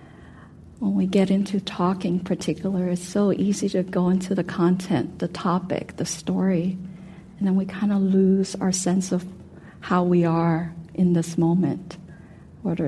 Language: English